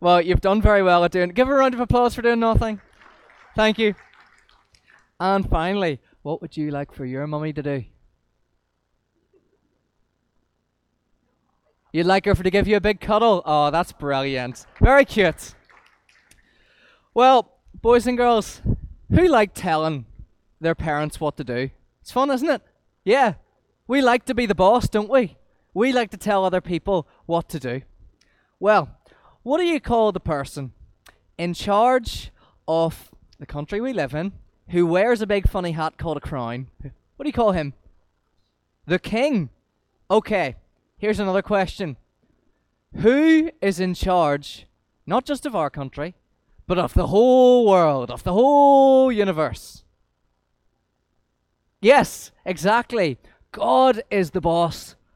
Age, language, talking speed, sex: 20-39, English, 150 wpm, male